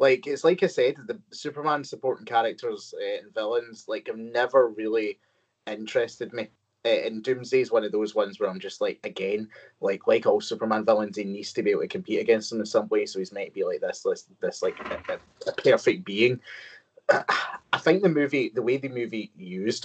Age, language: 20-39, English